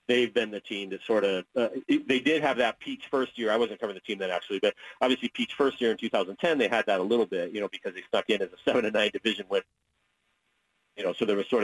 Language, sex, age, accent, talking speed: English, male, 40-59, American, 270 wpm